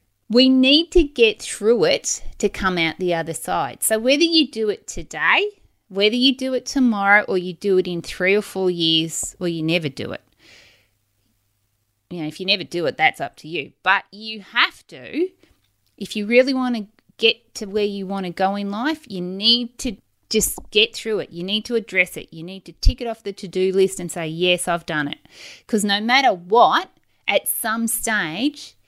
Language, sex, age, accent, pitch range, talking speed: English, female, 30-49, Australian, 175-245 Hz, 210 wpm